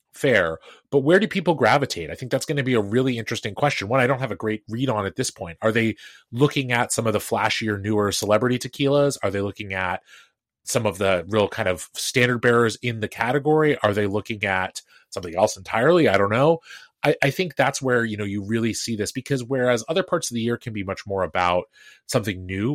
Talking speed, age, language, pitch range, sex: 230 wpm, 30-49, English, 105-130 Hz, male